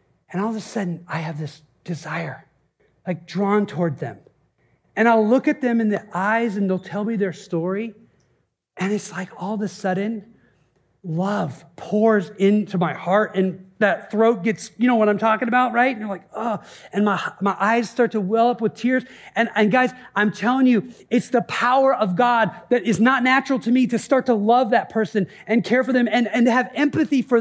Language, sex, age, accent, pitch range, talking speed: English, male, 40-59, American, 195-250 Hz, 210 wpm